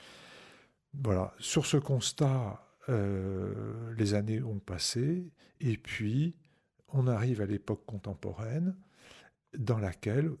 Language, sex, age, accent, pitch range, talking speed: French, male, 50-69, French, 100-130 Hz, 105 wpm